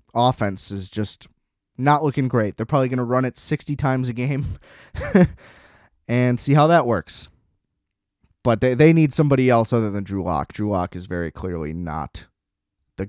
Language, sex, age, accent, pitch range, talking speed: English, male, 20-39, American, 110-150 Hz, 175 wpm